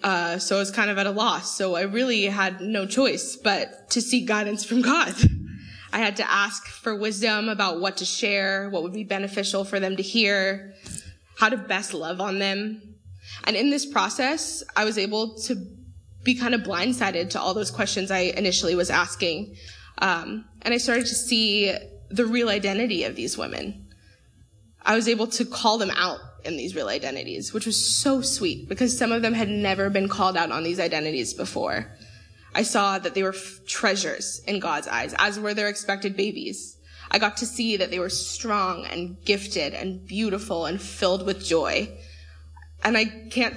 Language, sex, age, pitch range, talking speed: English, female, 20-39, 175-225 Hz, 190 wpm